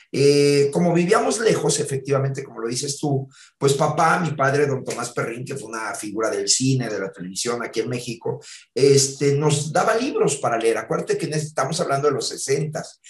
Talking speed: 190 wpm